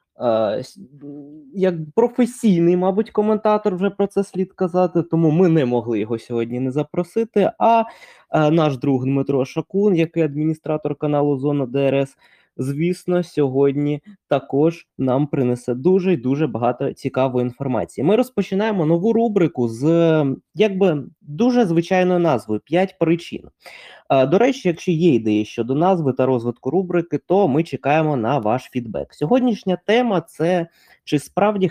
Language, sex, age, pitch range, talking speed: Ukrainian, male, 20-39, 135-185 Hz, 130 wpm